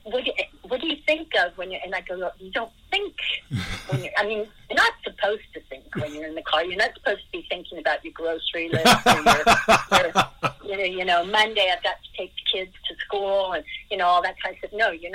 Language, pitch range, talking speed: English, 165-205 Hz, 230 wpm